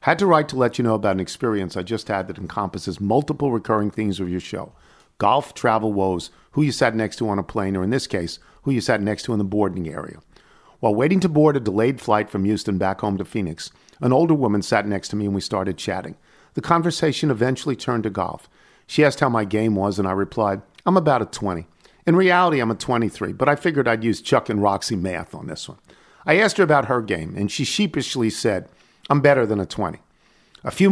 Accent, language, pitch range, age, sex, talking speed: American, English, 100-135 Hz, 50-69, male, 235 wpm